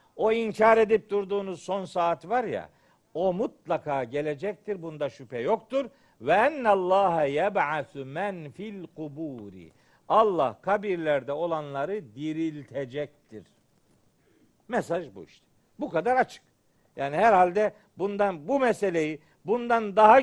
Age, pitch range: 60-79, 160-225 Hz